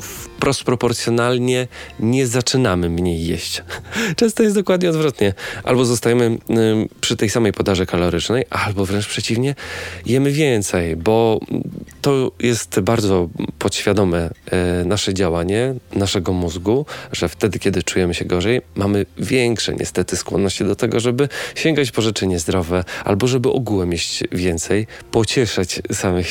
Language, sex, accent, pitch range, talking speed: Polish, male, native, 90-120 Hz, 130 wpm